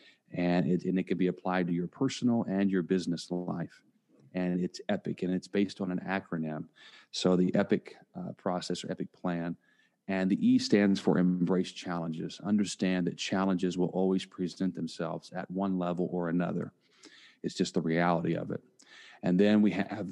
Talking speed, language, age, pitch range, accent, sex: 180 wpm, English, 40-59, 90-100 Hz, American, male